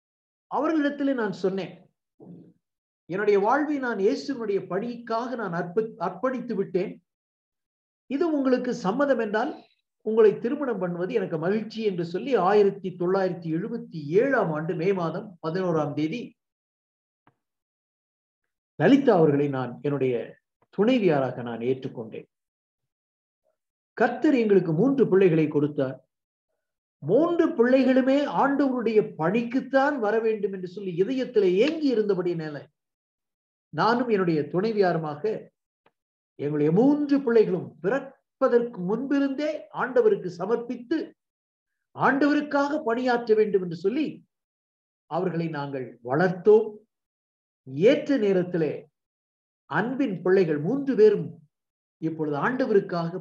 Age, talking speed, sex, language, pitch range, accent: 50-69, 90 wpm, male, Tamil, 165-250 Hz, native